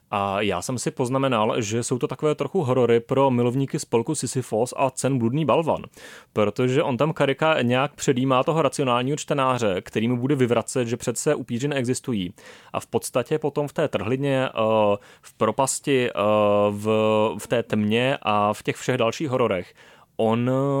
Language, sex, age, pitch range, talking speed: Czech, male, 30-49, 115-135 Hz, 160 wpm